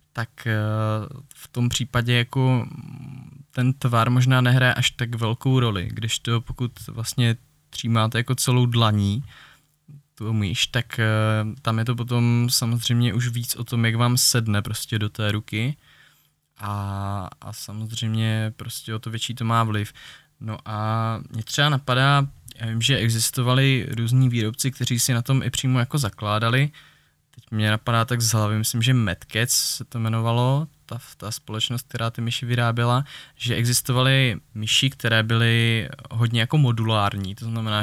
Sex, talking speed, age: male, 155 wpm, 20-39